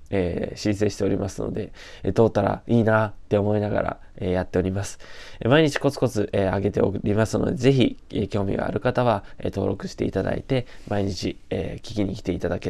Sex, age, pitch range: male, 20-39, 95-115 Hz